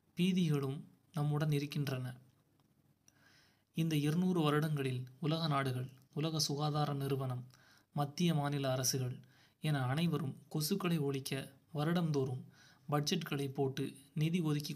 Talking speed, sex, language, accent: 95 wpm, male, Tamil, native